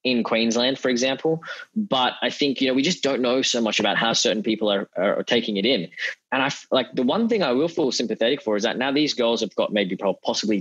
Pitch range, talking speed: 100-130 Hz, 250 wpm